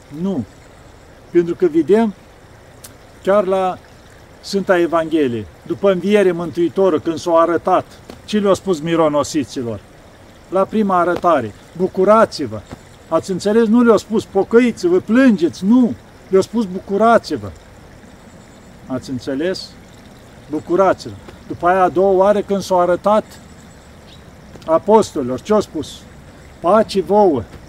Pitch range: 145-195 Hz